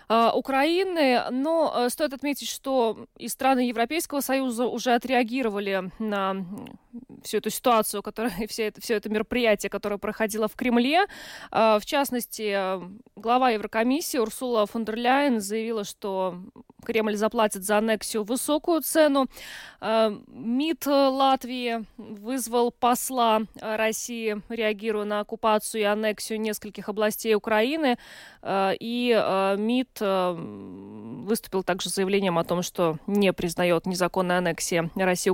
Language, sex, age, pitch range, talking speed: Russian, female, 20-39, 200-245 Hz, 115 wpm